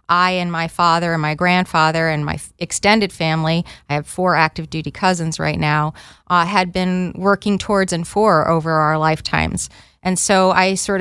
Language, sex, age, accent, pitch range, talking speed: English, female, 30-49, American, 170-195 Hz, 180 wpm